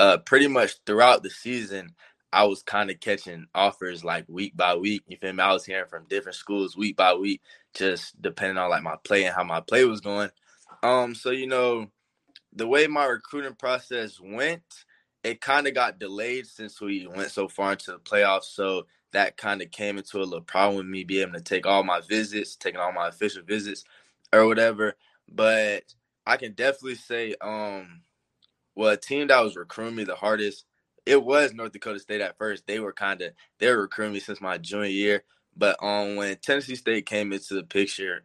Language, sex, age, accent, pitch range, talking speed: English, male, 20-39, American, 95-110 Hz, 205 wpm